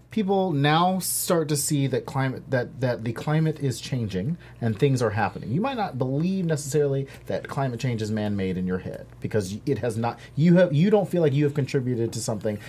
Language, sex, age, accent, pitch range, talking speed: English, male, 40-59, American, 115-155 Hz, 220 wpm